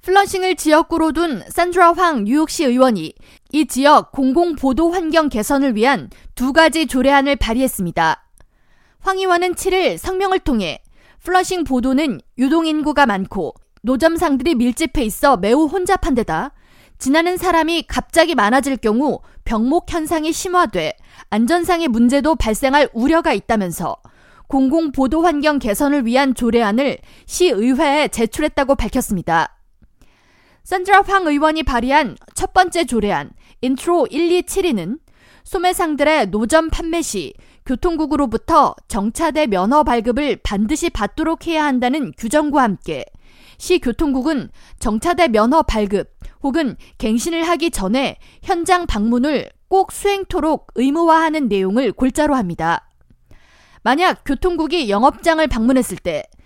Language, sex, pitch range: Korean, female, 245-330 Hz